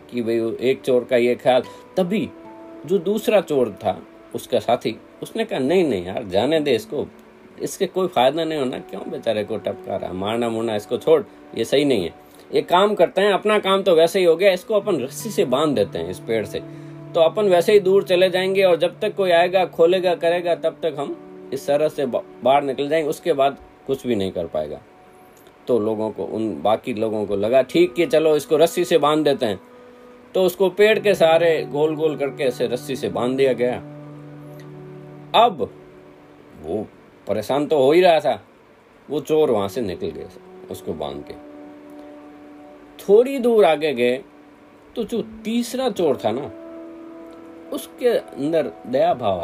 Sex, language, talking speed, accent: male, Hindi, 185 wpm, native